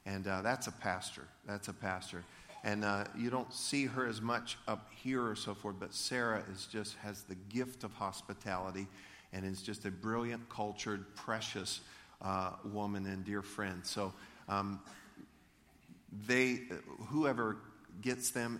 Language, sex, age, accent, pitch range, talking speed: English, male, 50-69, American, 95-110 Hz, 155 wpm